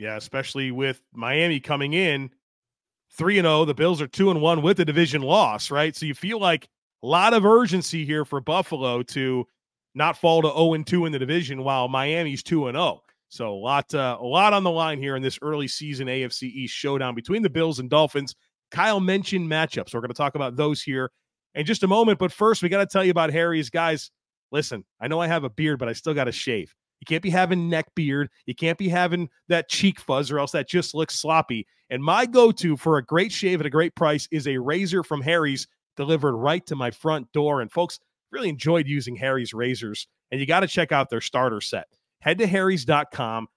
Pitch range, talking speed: 135-170 Hz, 225 wpm